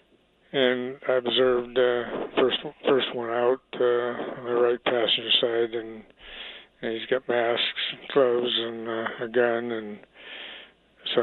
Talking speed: 145 wpm